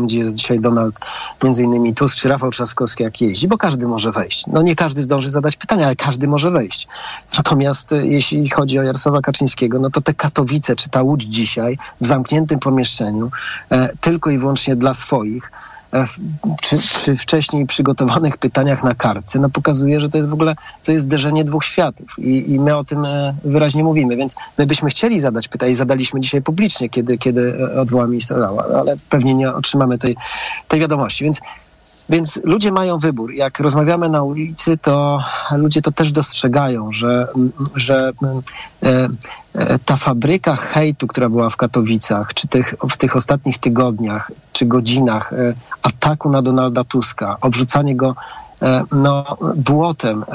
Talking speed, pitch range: 155 wpm, 125-150 Hz